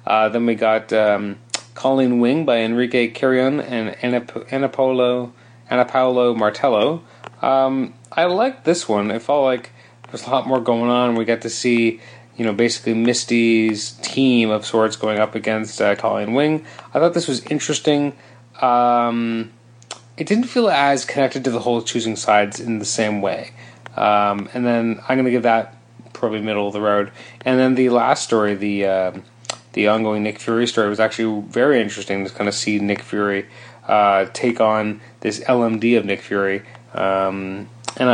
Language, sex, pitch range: English, male, 110-125 Hz